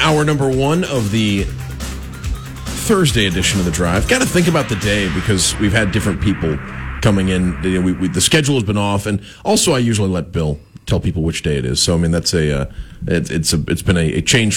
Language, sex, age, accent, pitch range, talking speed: English, male, 30-49, American, 90-115 Hz, 235 wpm